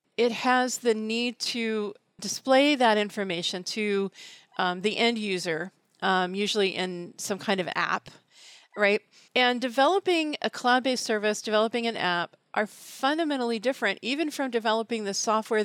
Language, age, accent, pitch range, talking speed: English, 40-59, American, 200-255 Hz, 140 wpm